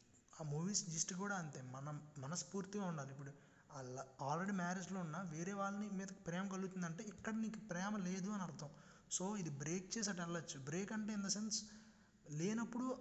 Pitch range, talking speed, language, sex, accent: 155-205 Hz, 165 wpm, Telugu, male, native